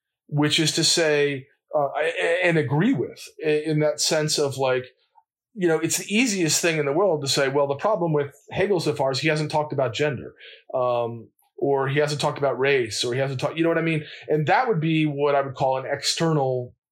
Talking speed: 225 wpm